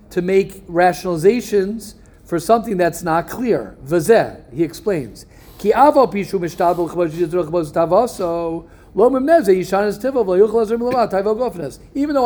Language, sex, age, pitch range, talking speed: English, male, 50-69, 155-225 Hz, 65 wpm